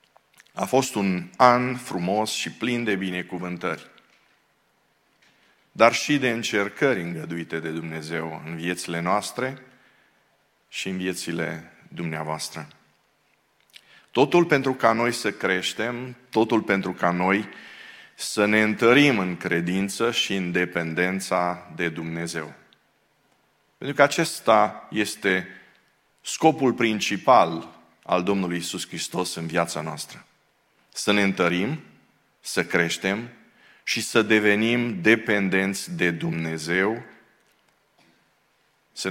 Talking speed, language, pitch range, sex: 105 wpm, Romanian, 85-115 Hz, male